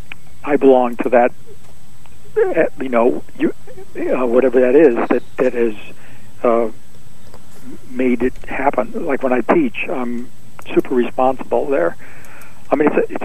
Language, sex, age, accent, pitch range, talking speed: English, male, 60-79, American, 120-130 Hz, 140 wpm